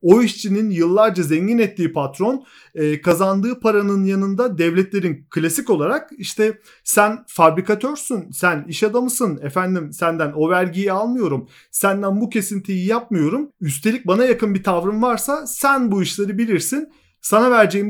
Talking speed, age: 130 wpm, 40-59